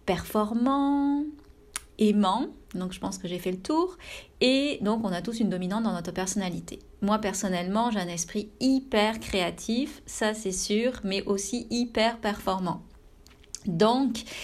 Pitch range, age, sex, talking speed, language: 190-225 Hz, 30-49, female, 145 wpm, French